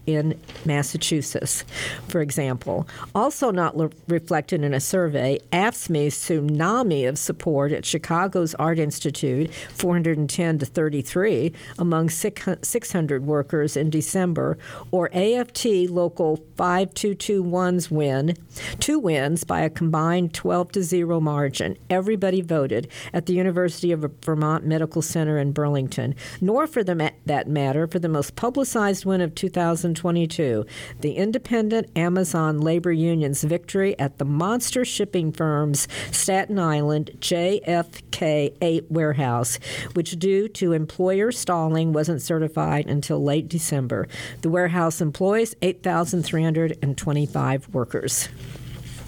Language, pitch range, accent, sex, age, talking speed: English, 150-180 Hz, American, female, 50-69, 115 wpm